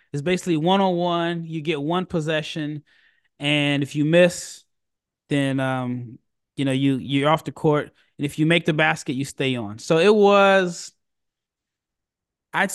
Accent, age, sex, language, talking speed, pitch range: American, 20-39, male, English, 155 wpm, 140-180 Hz